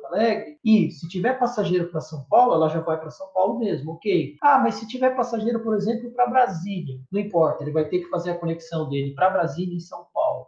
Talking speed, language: 230 wpm, Portuguese